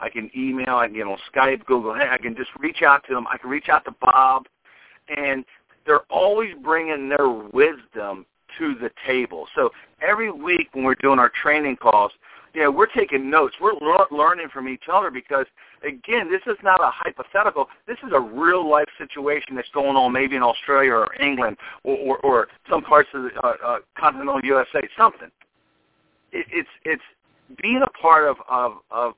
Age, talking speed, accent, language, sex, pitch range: 50-69, 190 wpm, American, English, male, 125-175 Hz